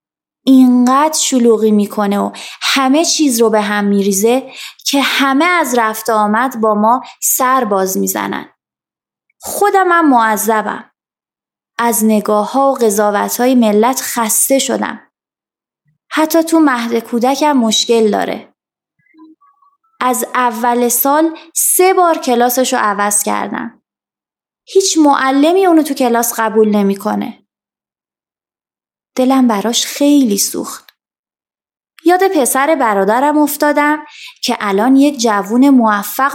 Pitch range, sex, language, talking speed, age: 220-295 Hz, female, Persian, 110 wpm, 20-39